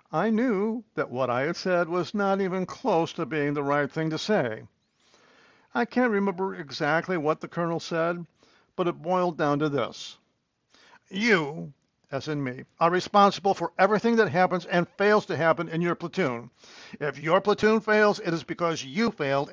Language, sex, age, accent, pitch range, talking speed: English, male, 60-79, American, 145-190 Hz, 180 wpm